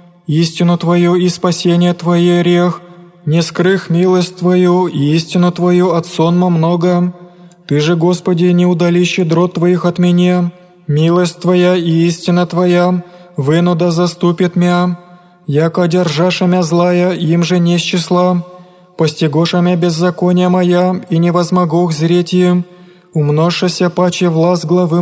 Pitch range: 175-180 Hz